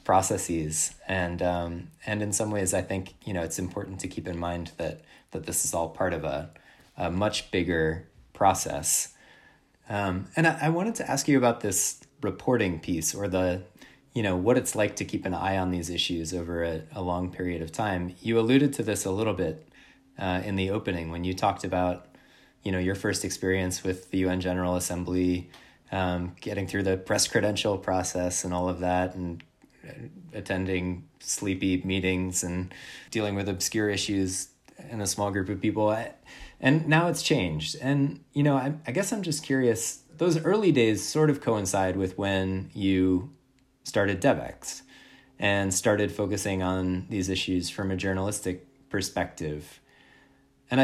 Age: 20-39